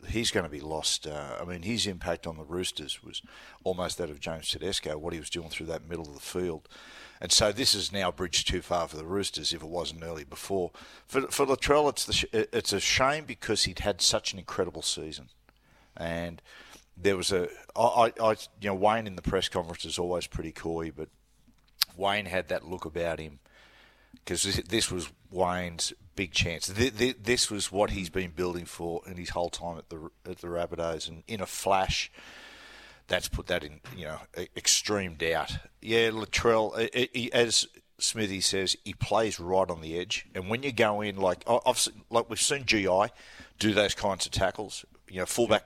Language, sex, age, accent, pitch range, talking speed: English, male, 50-69, Australian, 85-110 Hz, 195 wpm